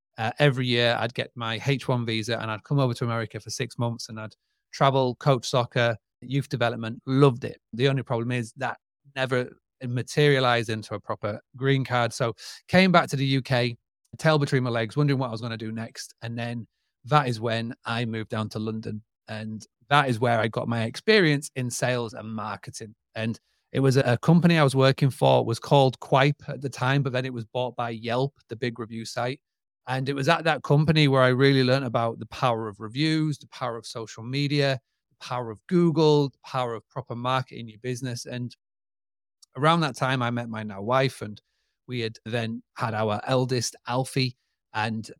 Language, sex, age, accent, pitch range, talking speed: English, male, 30-49, British, 115-135 Hz, 205 wpm